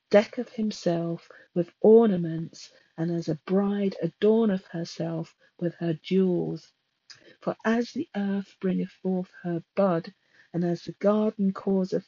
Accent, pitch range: British, 170-205 Hz